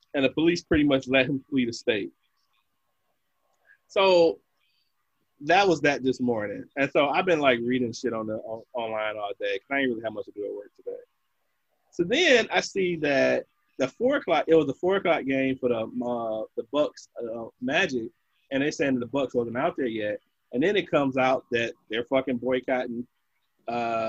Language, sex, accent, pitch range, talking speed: English, male, American, 115-145 Hz, 195 wpm